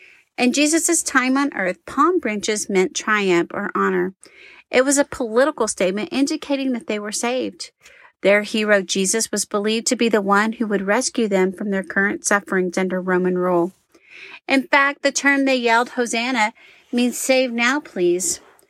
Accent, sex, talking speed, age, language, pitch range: American, female, 165 wpm, 40-59, English, 195-260 Hz